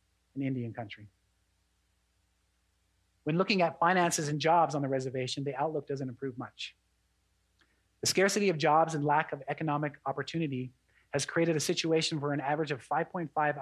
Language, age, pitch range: English, 30-49, 115-155 Hz